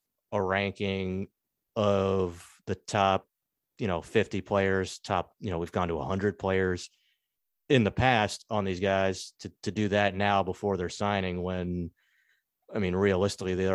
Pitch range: 90-105 Hz